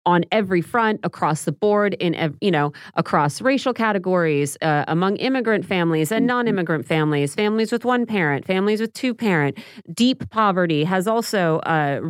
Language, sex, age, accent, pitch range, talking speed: English, female, 30-49, American, 170-240 Hz, 165 wpm